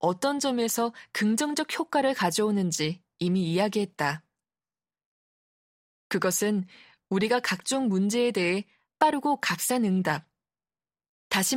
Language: Korean